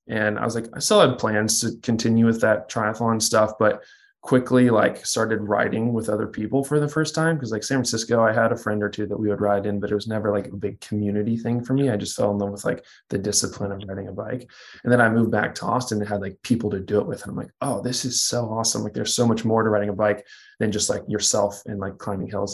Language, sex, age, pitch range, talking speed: English, male, 20-39, 105-115 Hz, 280 wpm